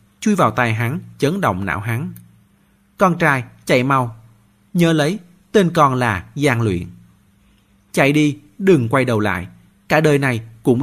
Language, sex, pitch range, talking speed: Vietnamese, male, 100-150 Hz, 160 wpm